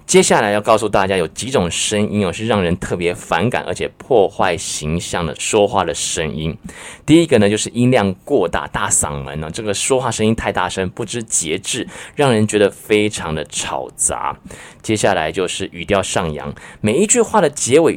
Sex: male